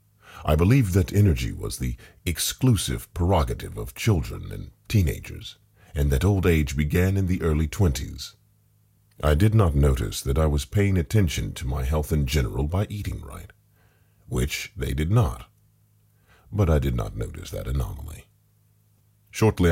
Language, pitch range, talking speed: English, 75-105 Hz, 150 wpm